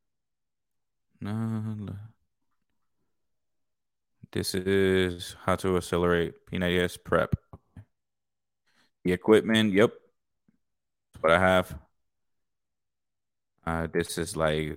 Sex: male